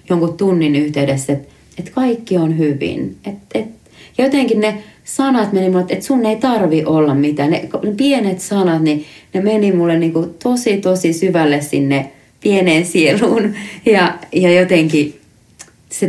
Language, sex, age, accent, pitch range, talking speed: Finnish, female, 30-49, native, 140-185 Hz, 155 wpm